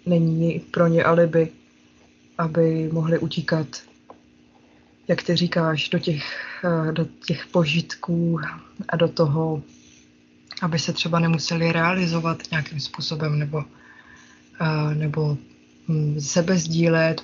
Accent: native